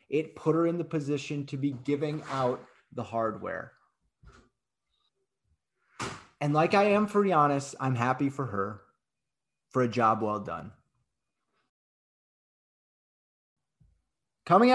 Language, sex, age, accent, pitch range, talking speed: English, male, 30-49, American, 130-185 Hz, 115 wpm